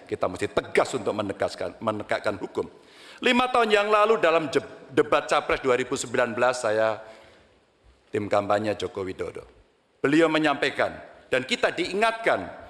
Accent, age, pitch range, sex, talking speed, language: native, 50-69, 135-225 Hz, male, 120 wpm, Indonesian